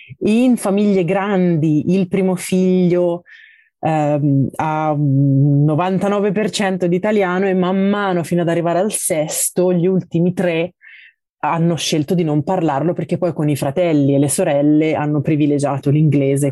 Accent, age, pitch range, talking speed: native, 30-49, 145-180 Hz, 140 wpm